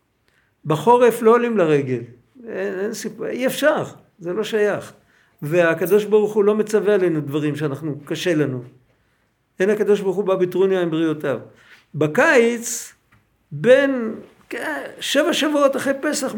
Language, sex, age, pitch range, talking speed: Hebrew, male, 50-69, 170-235 Hz, 130 wpm